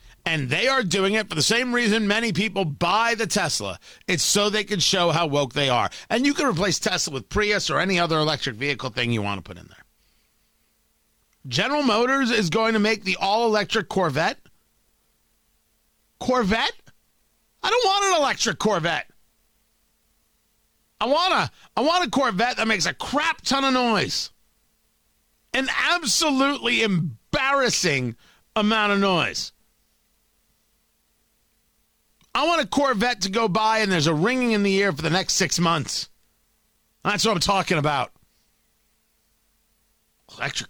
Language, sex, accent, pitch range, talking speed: English, male, American, 155-230 Hz, 150 wpm